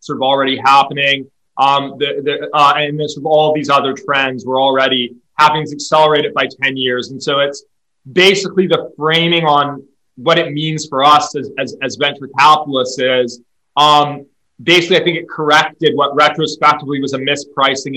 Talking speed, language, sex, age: 175 wpm, English, male, 20-39